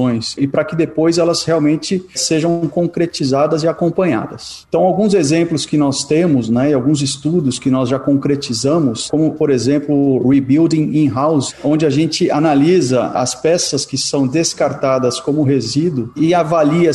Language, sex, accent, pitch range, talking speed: Portuguese, male, Brazilian, 130-155 Hz, 155 wpm